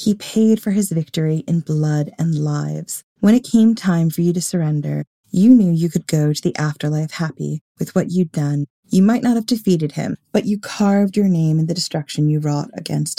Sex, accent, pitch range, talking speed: female, American, 155-195 Hz, 215 wpm